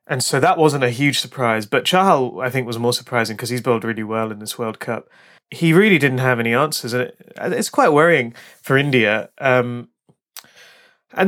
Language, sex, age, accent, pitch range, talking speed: English, male, 30-49, British, 115-155 Hz, 195 wpm